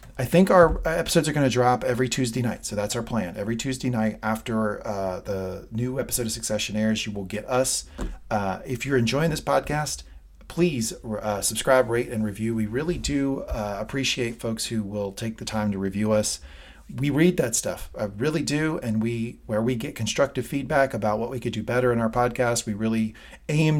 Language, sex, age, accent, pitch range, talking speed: English, male, 40-59, American, 105-130 Hz, 205 wpm